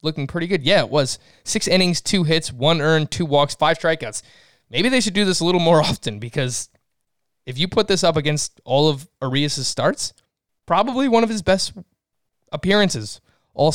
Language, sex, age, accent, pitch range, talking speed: English, male, 20-39, American, 125-165 Hz, 190 wpm